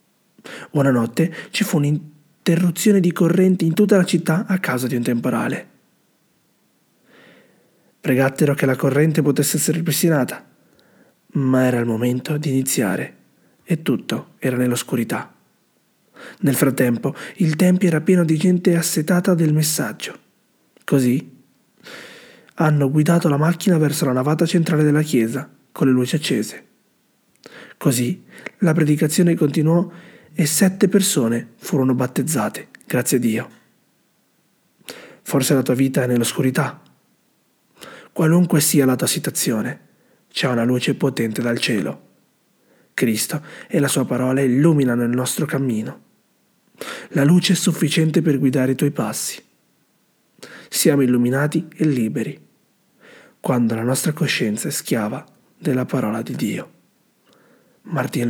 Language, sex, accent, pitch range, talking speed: Italian, male, native, 130-170 Hz, 125 wpm